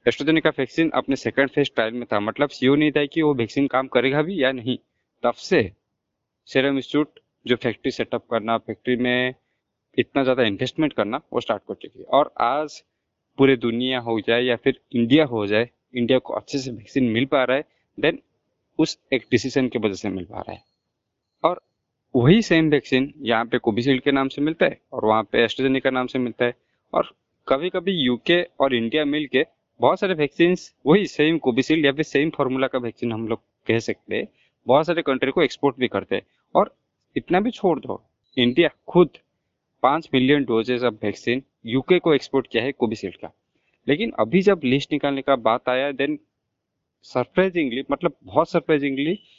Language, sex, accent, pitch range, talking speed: Hindi, male, native, 120-155 Hz, 185 wpm